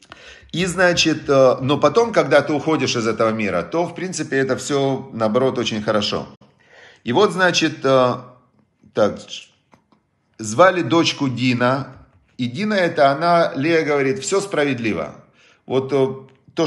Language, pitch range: Russian, 120-155 Hz